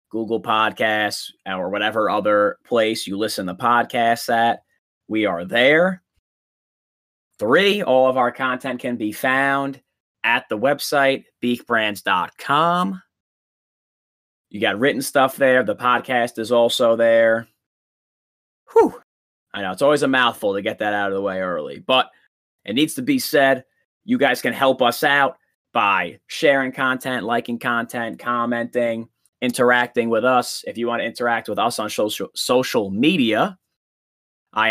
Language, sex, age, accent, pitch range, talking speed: English, male, 30-49, American, 110-135 Hz, 145 wpm